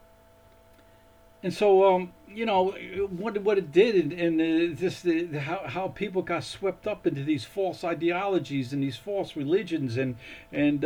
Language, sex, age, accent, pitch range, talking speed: English, male, 50-69, American, 135-180 Hz, 165 wpm